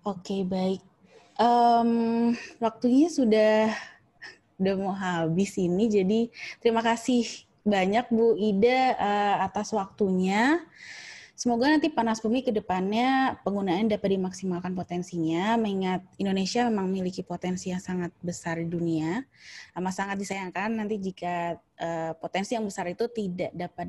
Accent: native